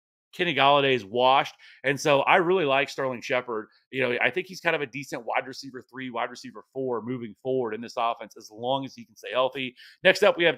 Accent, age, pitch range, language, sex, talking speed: American, 30-49, 125-145 Hz, English, male, 240 wpm